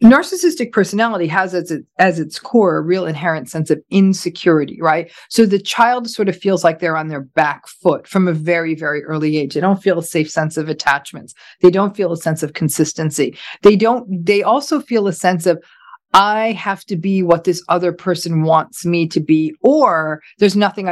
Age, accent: 40-59, American